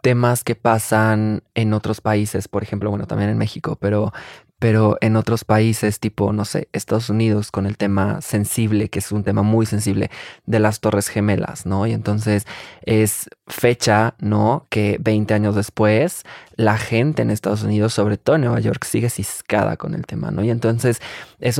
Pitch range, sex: 105-120 Hz, male